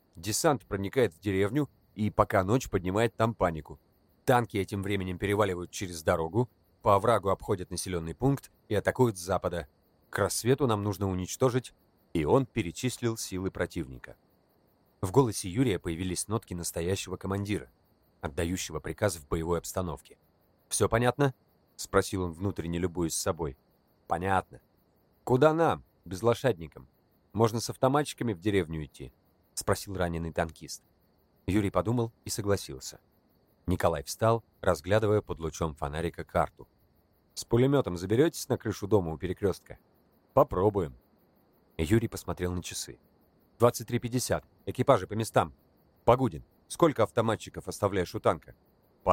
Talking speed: 130 wpm